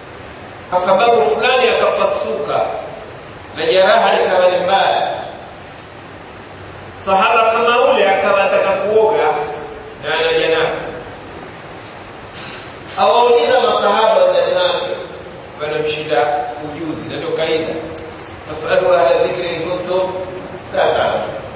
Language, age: Swahili, 40-59